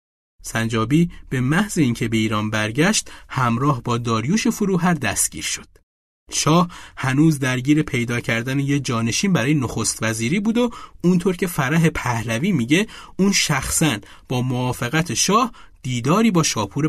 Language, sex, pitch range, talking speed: Persian, male, 120-165 Hz, 135 wpm